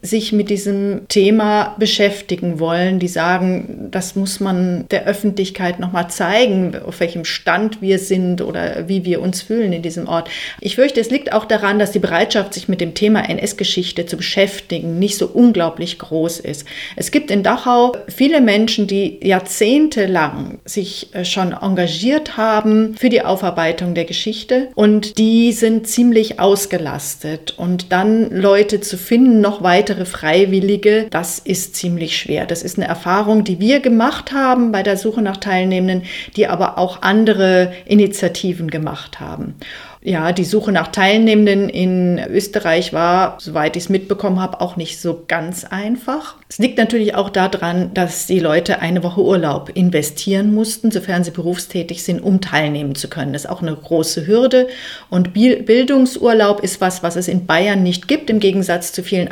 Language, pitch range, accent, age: German, 175-215 Hz, German, 40-59